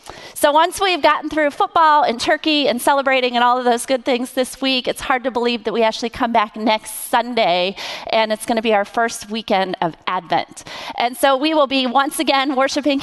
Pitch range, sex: 205-260 Hz, female